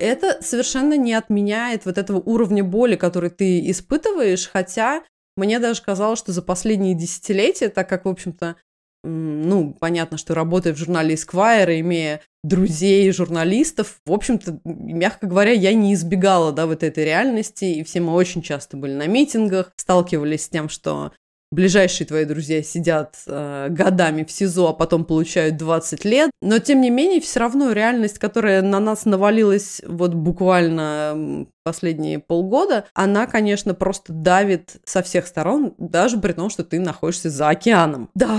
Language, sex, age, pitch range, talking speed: Russian, female, 20-39, 165-210 Hz, 155 wpm